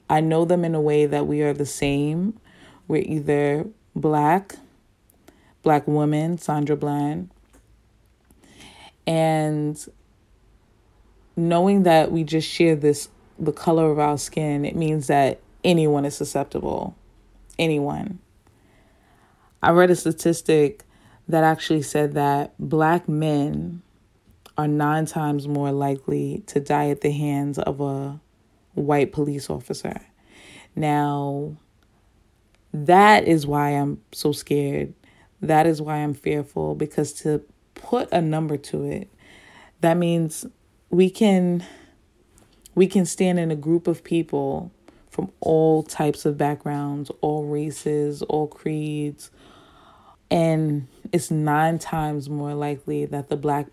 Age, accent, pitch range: 20-39, American, 140-160 Hz